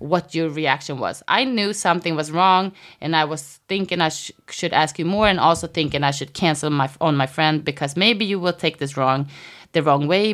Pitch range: 145-180 Hz